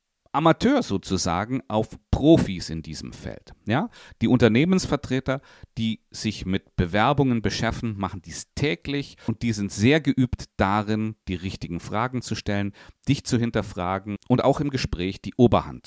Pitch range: 90-130 Hz